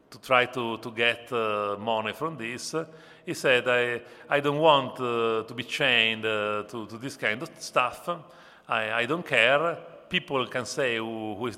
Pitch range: 115-140 Hz